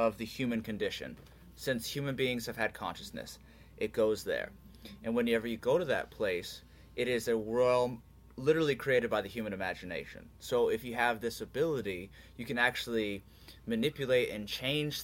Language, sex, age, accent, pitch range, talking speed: English, male, 30-49, American, 110-125 Hz, 170 wpm